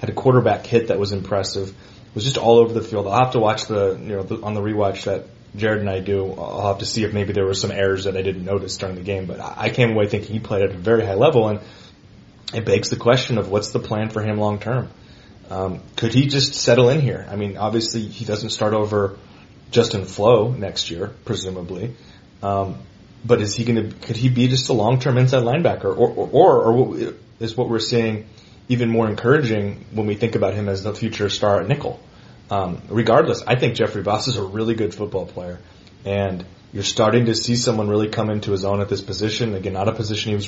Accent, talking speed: American, 235 wpm